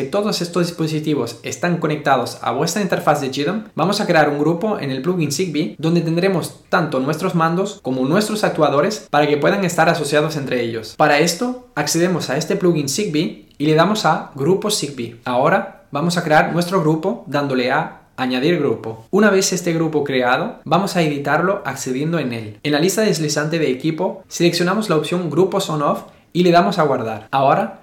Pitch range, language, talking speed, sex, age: 145-185 Hz, Spanish, 190 wpm, male, 20-39